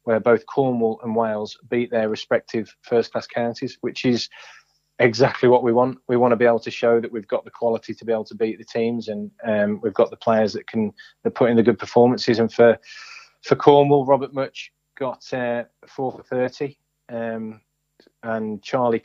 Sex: male